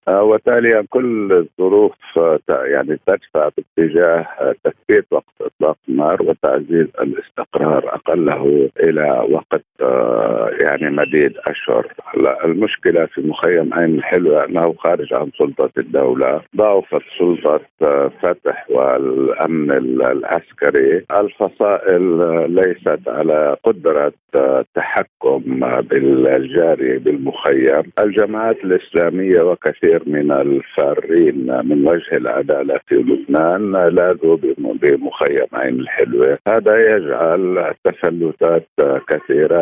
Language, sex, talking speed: Arabic, male, 95 wpm